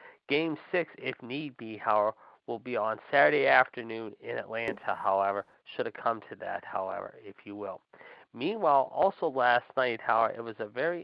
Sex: male